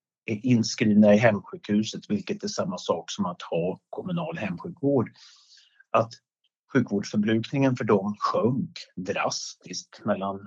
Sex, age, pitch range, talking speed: male, 50-69, 105-140 Hz, 115 wpm